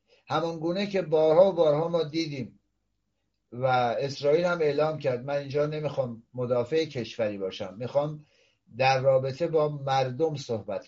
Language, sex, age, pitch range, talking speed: Persian, male, 60-79, 125-165 Hz, 140 wpm